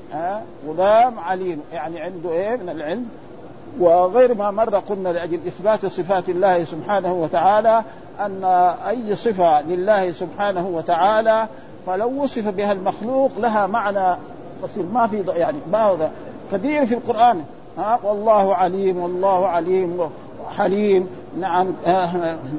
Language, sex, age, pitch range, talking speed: Arabic, male, 50-69, 185-235 Hz, 125 wpm